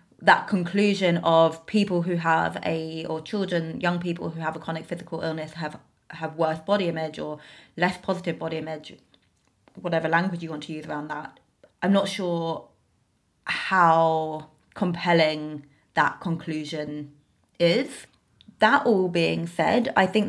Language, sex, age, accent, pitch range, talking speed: English, female, 20-39, British, 160-185 Hz, 145 wpm